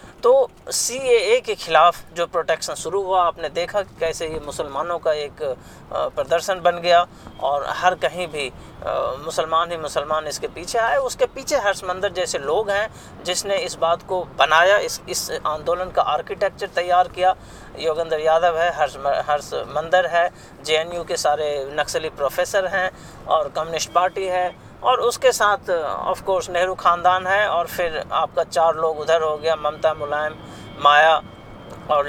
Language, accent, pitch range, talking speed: Hindi, native, 165-210 Hz, 155 wpm